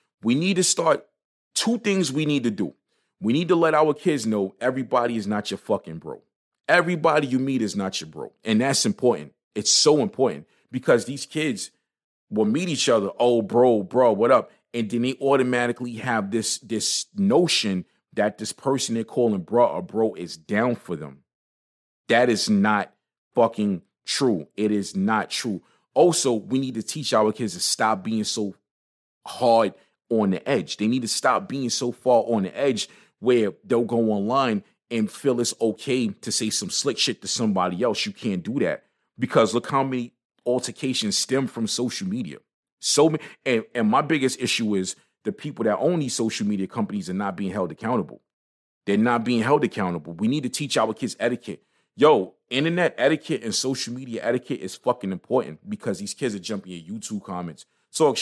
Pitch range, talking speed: 105-140 Hz, 190 wpm